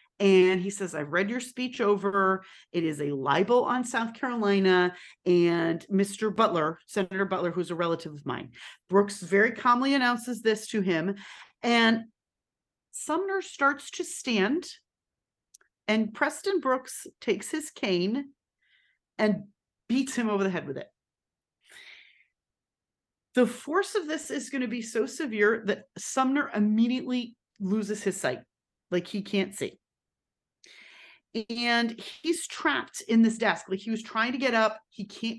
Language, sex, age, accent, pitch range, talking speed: English, female, 40-59, American, 185-240 Hz, 150 wpm